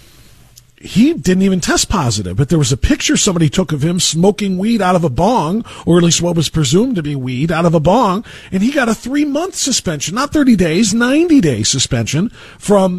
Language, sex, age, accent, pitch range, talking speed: English, male, 40-59, American, 130-220 Hz, 215 wpm